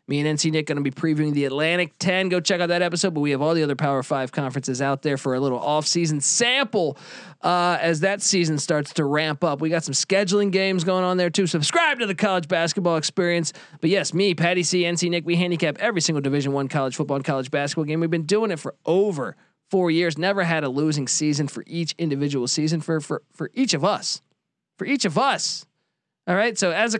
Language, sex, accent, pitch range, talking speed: English, male, American, 155-205 Hz, 240 wpm